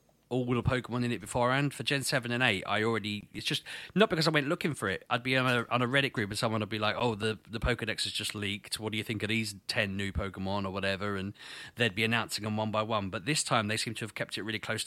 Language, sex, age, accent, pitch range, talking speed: English, male, 30-49, British, 100-120 Hz, 290 wpm